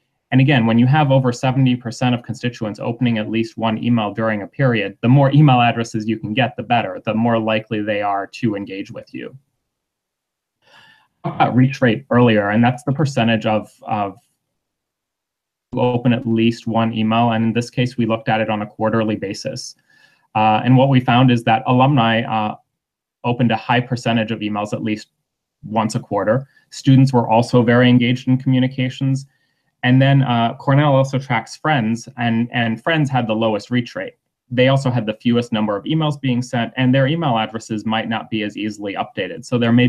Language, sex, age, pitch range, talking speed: English, male, 30-49, 110-130 Hz, 195 wpm